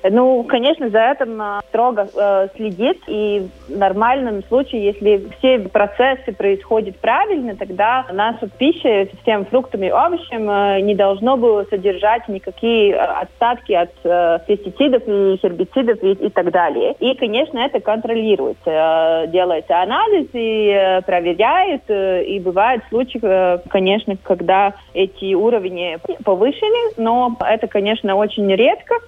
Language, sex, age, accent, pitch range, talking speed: Russian, female, 30-49, native, 190-245 Hz, 115 wpm